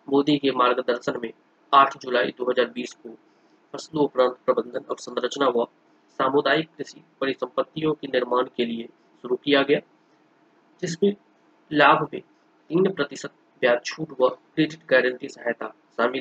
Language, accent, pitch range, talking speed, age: Hindi, native, 125-170 Hz, 95 wpm, 30-49